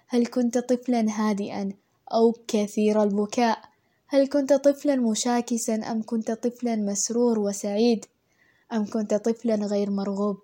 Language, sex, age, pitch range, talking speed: Arabic, female, 10-29, 210-250 Hz, 120 wpm